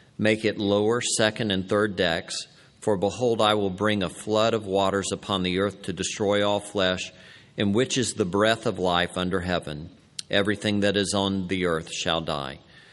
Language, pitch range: English, 90-110 Hz